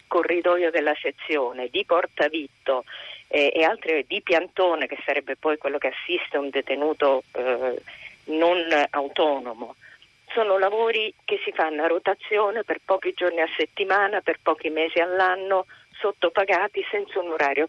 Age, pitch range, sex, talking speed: 40-59, 140-195 Hz, female, 140 wpm